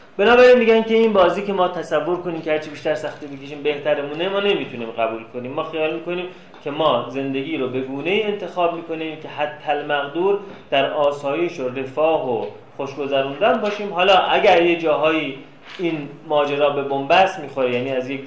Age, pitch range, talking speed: 30-49, 135-185 Hz, 175 wpm